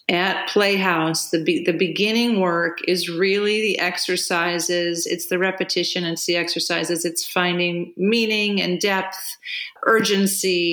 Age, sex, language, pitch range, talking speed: 40-59, female, English, 170-210 Hz, 130 wpm